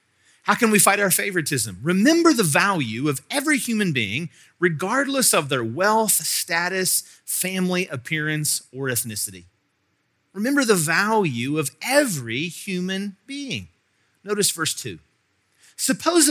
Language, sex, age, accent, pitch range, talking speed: English, male, 40-59, American, 135-205 Hz, 120 wpm